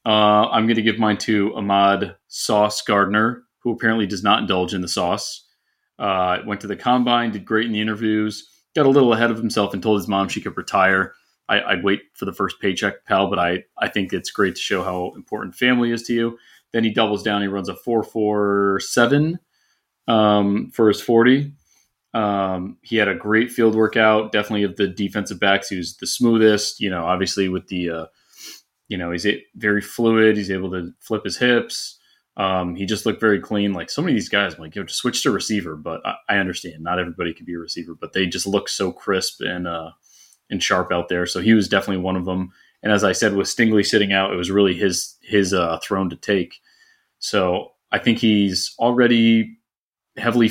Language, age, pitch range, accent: English, 30-49, 95-110 Hz, American